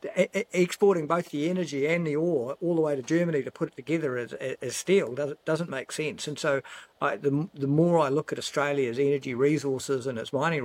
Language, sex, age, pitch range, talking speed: English, male, 50-69, 135-160 Hz, 210 wpm